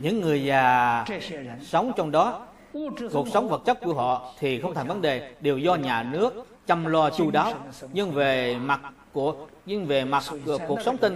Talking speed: 195 wpm